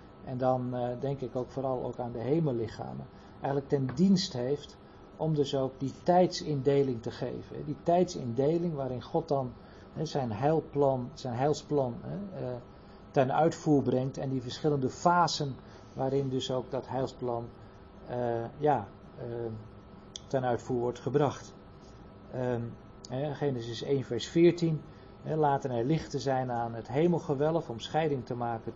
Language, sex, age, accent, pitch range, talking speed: Dutch, male, 50-69, Dutch, 115-145 Hz, 130 wpm